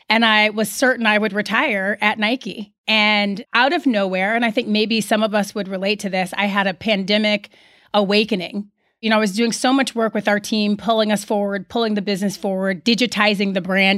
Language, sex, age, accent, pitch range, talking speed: English, female, 30-49, American, 195-230 Hz, 215 wpm